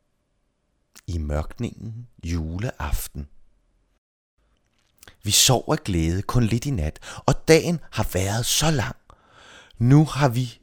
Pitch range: 85-145 Hz